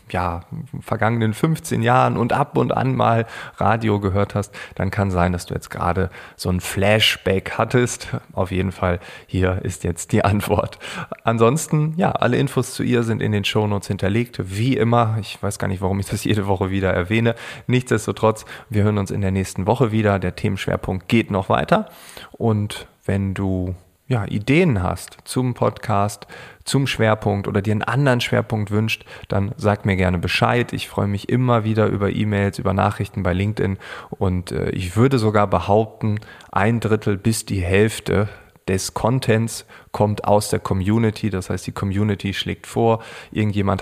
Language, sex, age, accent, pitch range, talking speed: German, male, 30-49, German, 95-115 Hz, 170 wpm